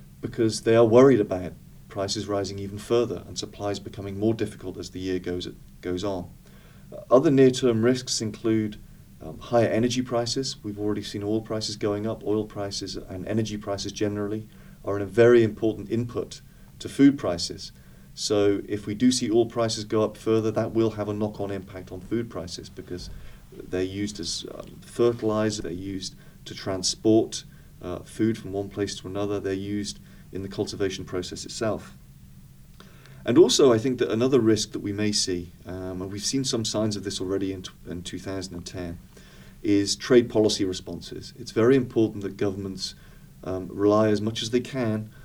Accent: British